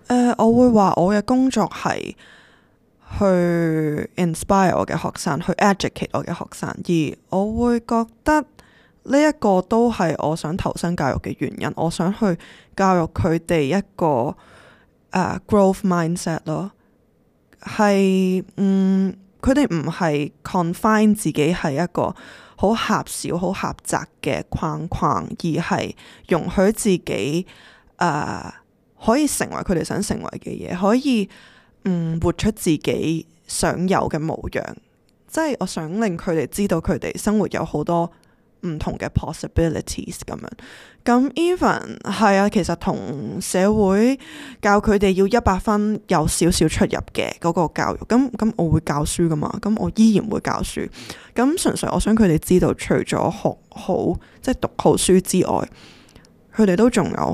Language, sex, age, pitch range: Chinese, female, 20-39, 170-220 Hz